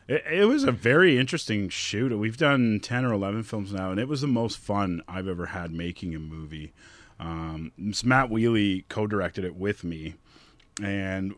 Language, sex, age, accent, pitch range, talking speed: English, male, 30-49, American, 95-110 Hz, 175 wpm